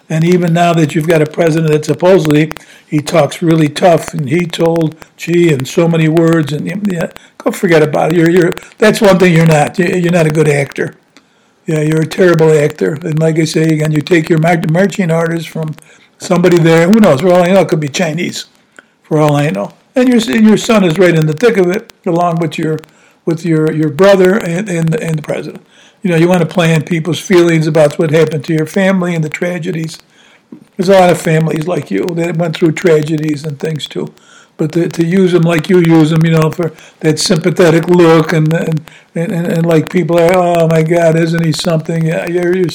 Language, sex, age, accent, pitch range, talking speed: English, male, 60-79, American, 160-185 Hz, 220 wpm